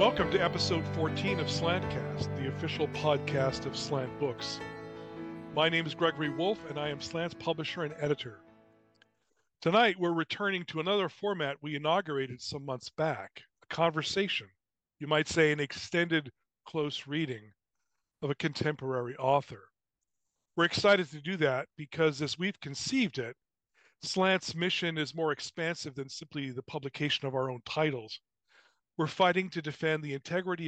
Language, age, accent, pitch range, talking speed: English, 40-59, American, 135-160 Hz, 150 wpm